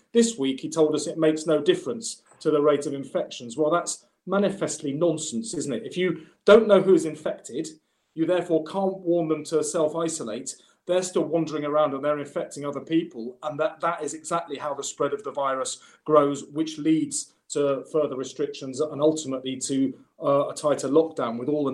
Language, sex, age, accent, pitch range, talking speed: English, male, 40-59, British, 140-165 Hz, 190 wpm